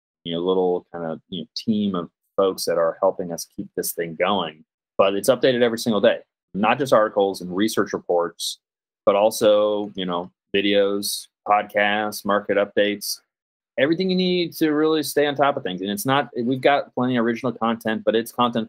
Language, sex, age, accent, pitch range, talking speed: English, male, 30-49, American, 95-120 Hz, 195 wpm